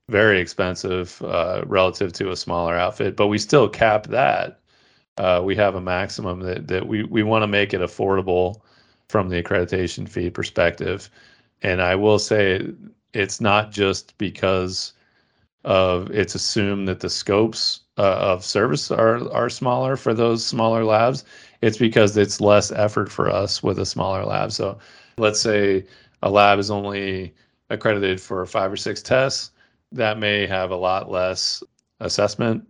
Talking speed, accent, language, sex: 160 wpm, American, English, male